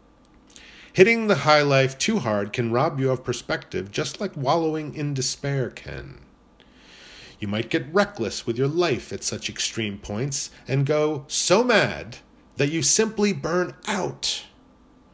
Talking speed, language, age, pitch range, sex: 145 wpm, English, 40-59, 120-180 Hz, male